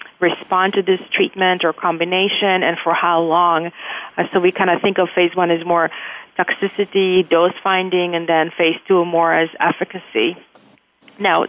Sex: female